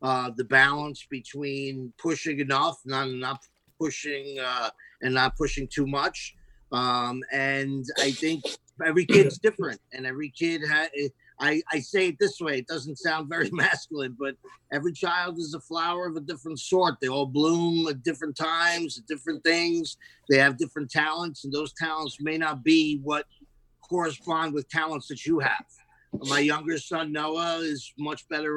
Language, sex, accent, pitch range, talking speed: English, male, American, 140-160 Hz, 170 wpm